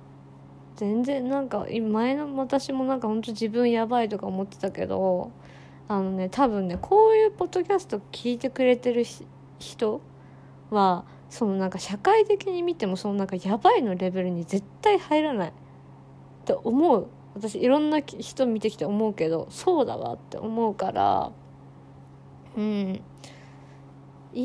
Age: 20-39